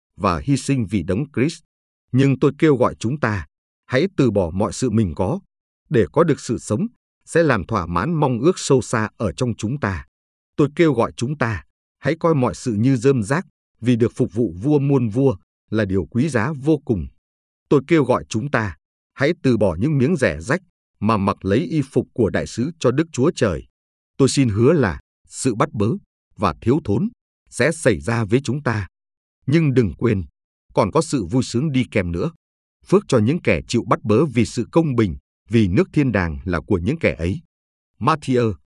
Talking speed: 205 wpm